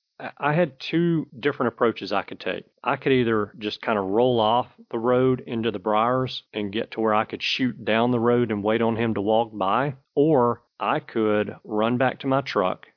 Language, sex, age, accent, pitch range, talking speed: English, male, 40-59, American, 105-120 Hz, 215 wpm